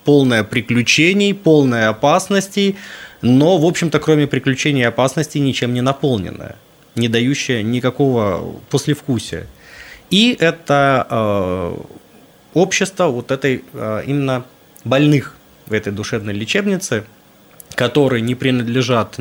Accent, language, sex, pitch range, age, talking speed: native, Russian, male, 115-160 Hz, 20-39, 100 wpm